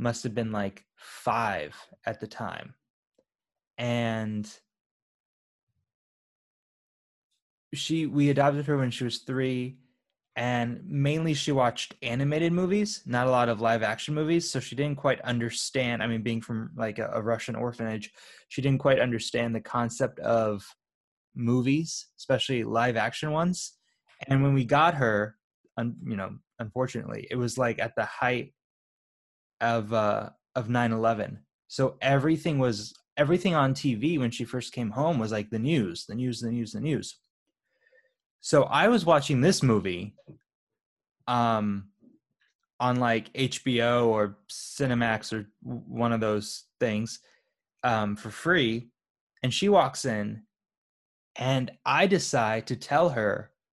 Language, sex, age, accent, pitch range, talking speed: English, male, 20-39, American, 115-140 Hz, 140 wpm